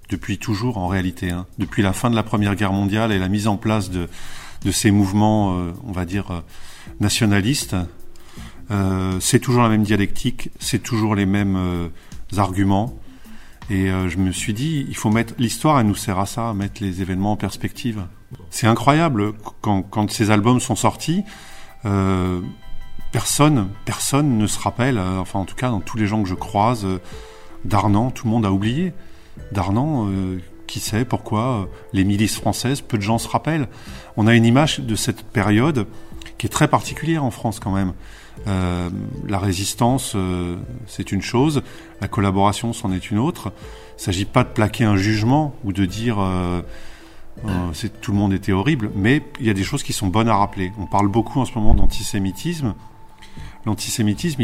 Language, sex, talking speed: French, male, 190 wpm